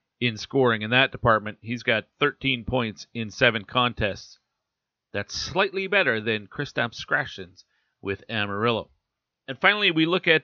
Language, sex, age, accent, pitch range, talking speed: English, male, 40-59, American, 115-135 Hz, 145 wpm